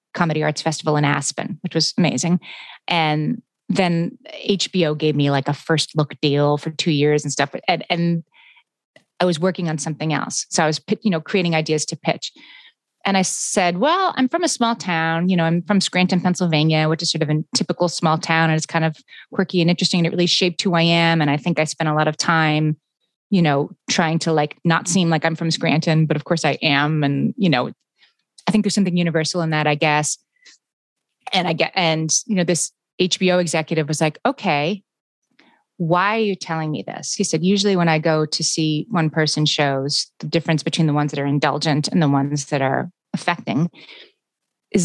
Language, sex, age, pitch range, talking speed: English, female, 30-49, 155-180 Hz, 210 wpm